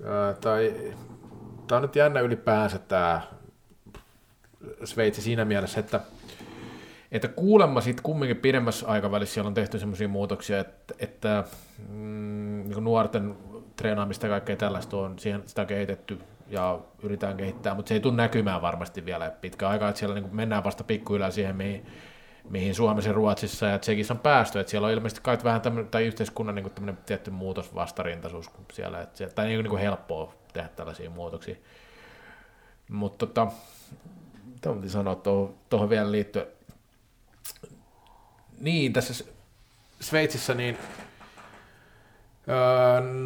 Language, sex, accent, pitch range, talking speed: Finnish, male, native, 100-115 Hz, 130 wpm